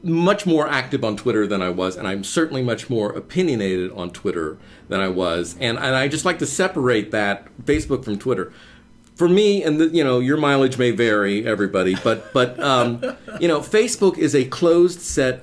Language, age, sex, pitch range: English, 50-69, male, 100-145 Hz